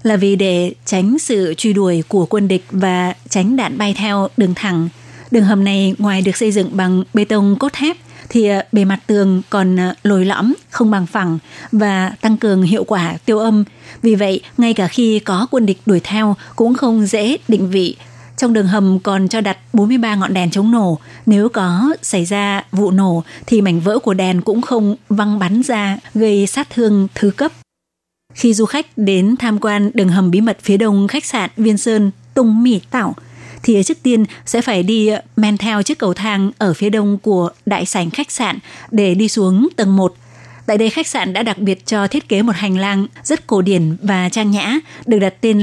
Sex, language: female, Vietnamese